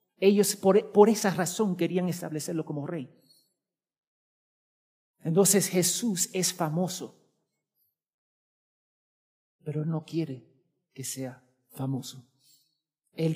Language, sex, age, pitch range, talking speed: Spanish, male, 50-69, 155-225 Hz, 90 wpm